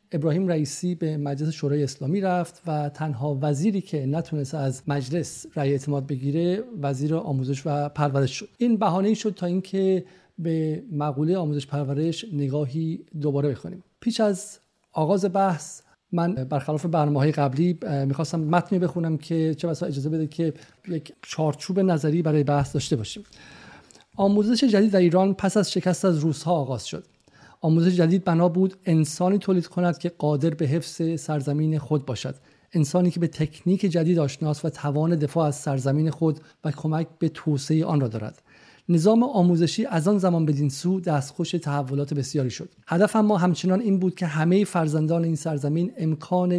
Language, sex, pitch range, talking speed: Persian, male, 145-180 Hz, 165 wpm